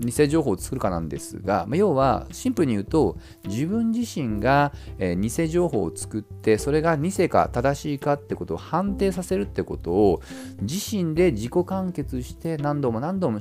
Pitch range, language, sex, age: 100-160 Hz, Japanese, male, 40-59